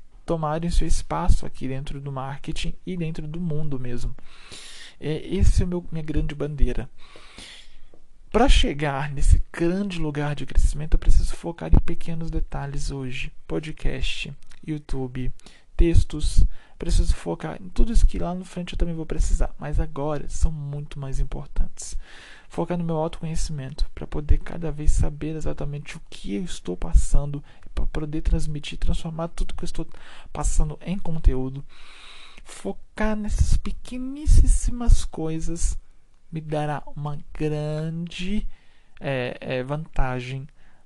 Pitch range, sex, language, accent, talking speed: 130-160 Hz, male, Portuguese, Brazilian, 135 wpm